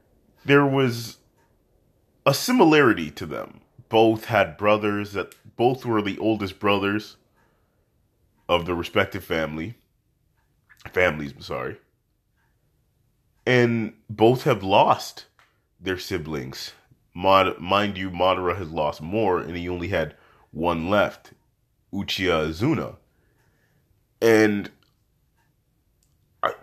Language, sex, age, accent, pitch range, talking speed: English, male, 30-49, American, 95-120 Hz, 100 wpm